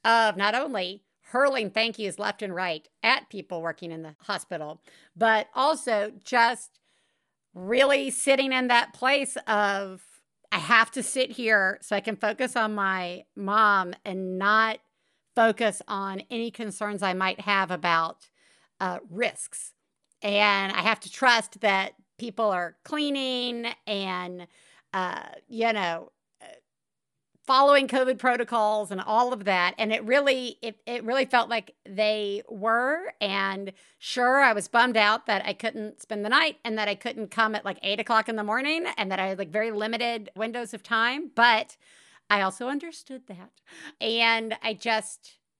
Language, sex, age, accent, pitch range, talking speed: English, female, 50-69, American, 200-250 Hz, 160 wpm